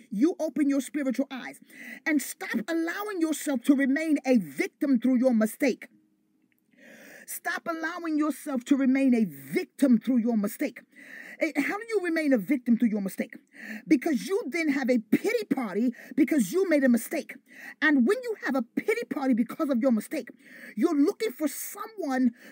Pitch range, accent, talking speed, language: 250-315 Hz, American, 165 wpm, English